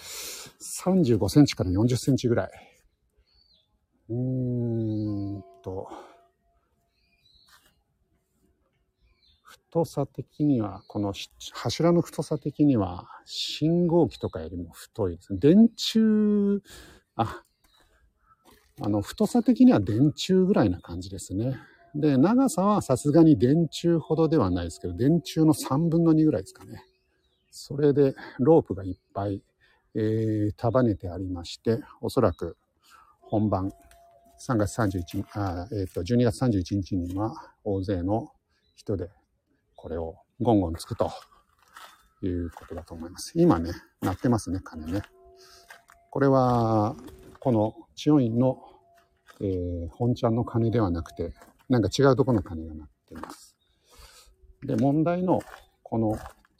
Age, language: 50-69, Japanese